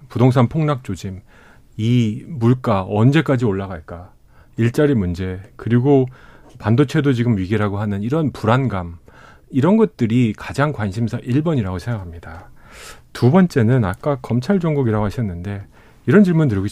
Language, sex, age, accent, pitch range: Korean, male, 40-59, native, 105-140 Hz